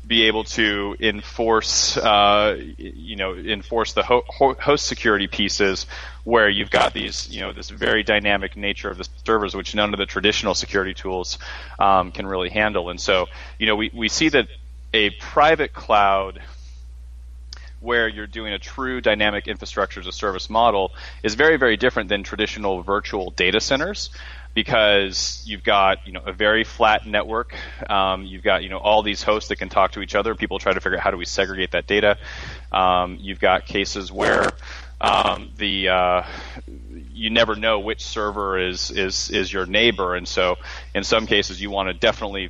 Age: 30-49